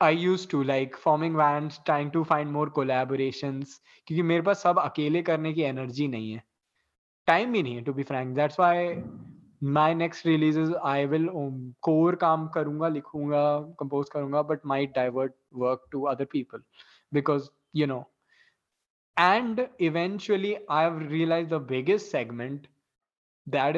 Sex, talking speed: male, 125 wpm